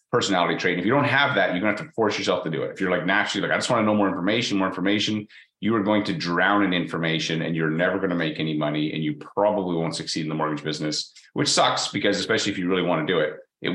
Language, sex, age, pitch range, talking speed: English, male, 30-49, 80-100 Hz, 295 wpm